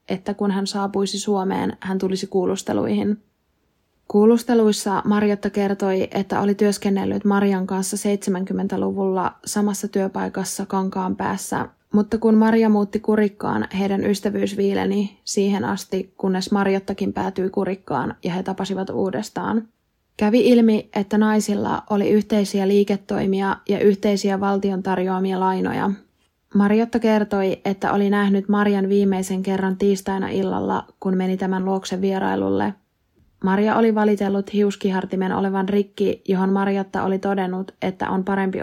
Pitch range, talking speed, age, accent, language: 190-205 Hz, 125 wpm, 20-39, native, Finnish